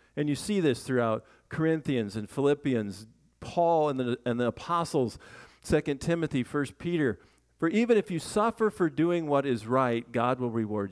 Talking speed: 165 wpm